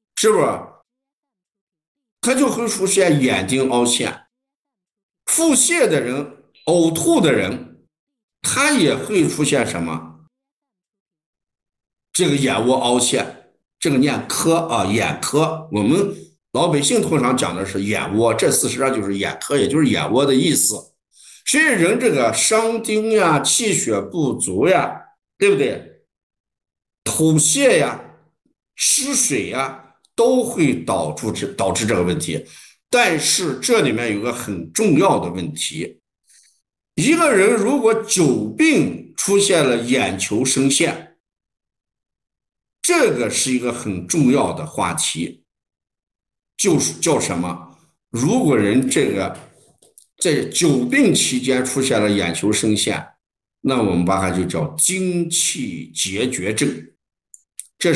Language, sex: Chinese, male